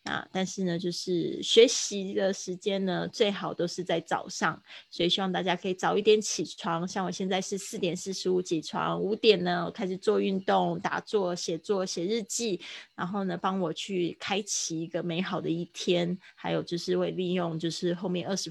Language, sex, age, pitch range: Chinese, female, 20-39, 175-205 Hz